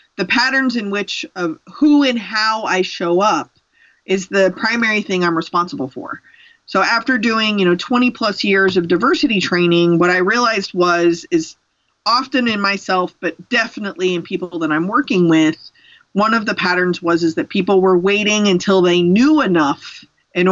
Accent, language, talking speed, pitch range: American, English, 175 wpm, 180-255 Hz